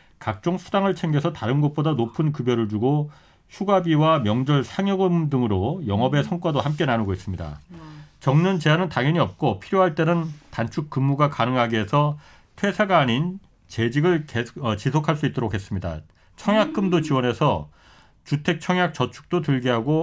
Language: Korean